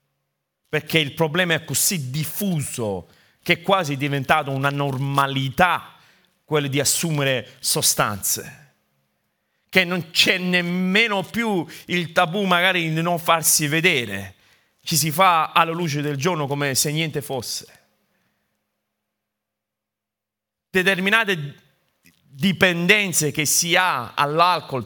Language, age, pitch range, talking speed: Italian, 40-59, 140-180 Hz, 110 wpm